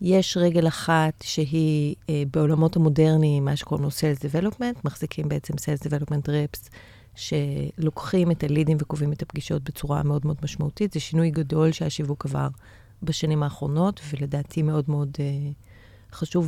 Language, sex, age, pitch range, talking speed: Hebrew, female, 30-49, 150-180 Hz, 140 wpm